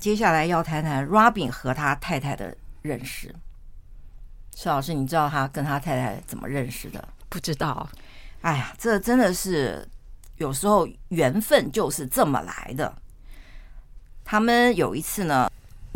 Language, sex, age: Chinese, female, 50-69